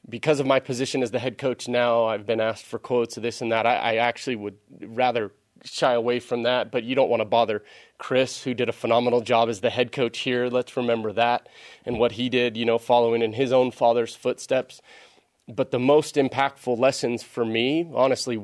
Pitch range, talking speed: 110-125 Hz, 220 wpm